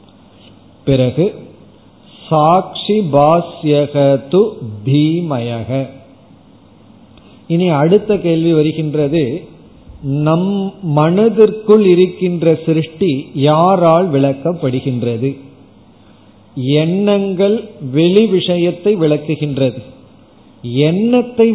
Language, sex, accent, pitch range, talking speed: Tamil, male, native, 135-180 Hz, 50 wpm